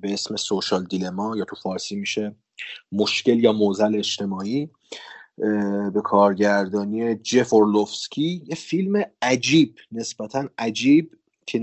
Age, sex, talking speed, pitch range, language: 30-49, male, 110 wpm, 105-130 Hz, Persian